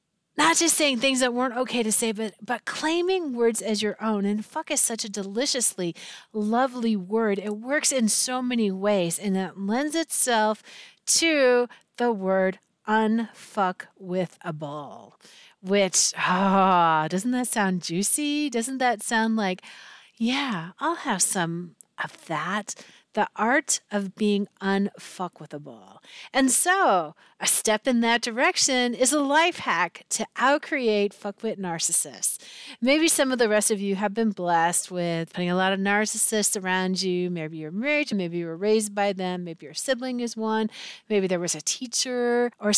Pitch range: 180-245 Hz